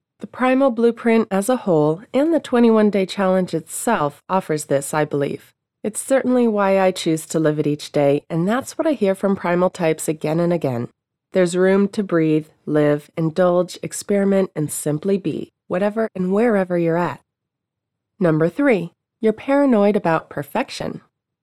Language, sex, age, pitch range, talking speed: English, female, 30-49, 165-225 Hz, 160 wpm